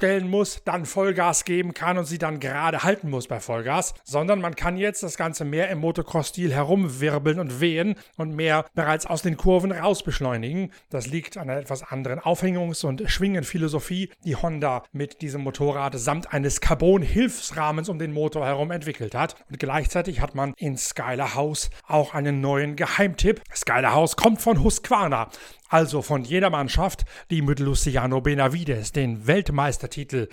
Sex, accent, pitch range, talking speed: male, German, 140-175 Hz, 160 wpm